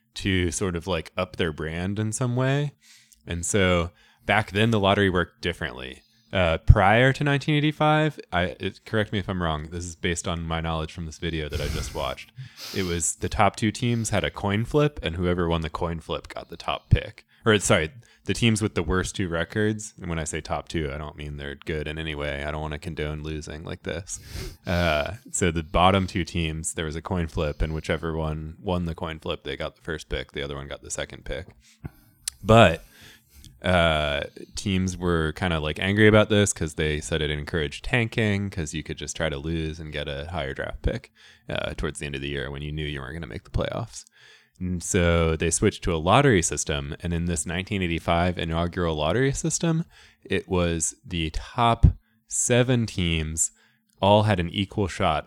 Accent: American